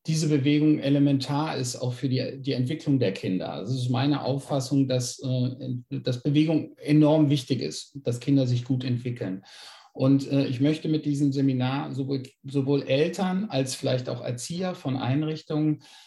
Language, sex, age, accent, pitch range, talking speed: German, male, 50-69, German, 130-155 Hz, 155 wpm